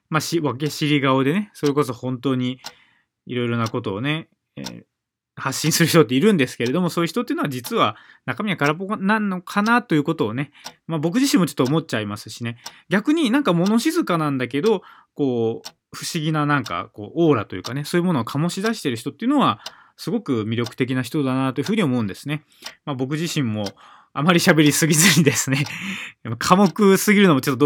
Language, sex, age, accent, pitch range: Japanese, male, 20-39, native, 125-170 Hz